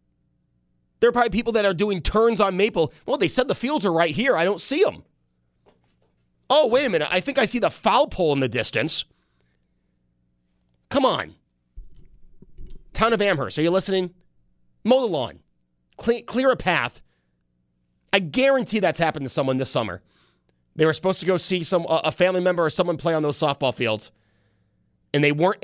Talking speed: 185 wpm